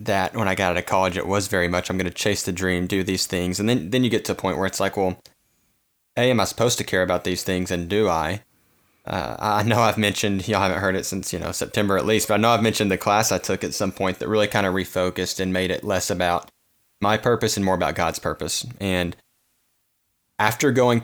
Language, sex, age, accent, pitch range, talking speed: English, male, 20-39, American, 95-110 Hz, 260 wpm